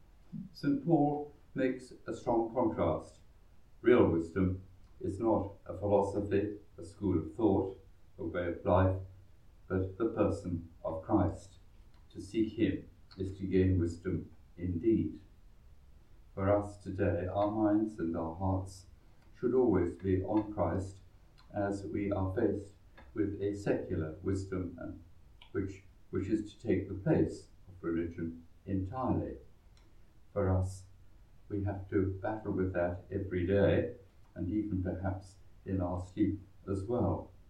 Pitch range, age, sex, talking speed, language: 90-100 Hz, 60-79, male, 130 wpm, English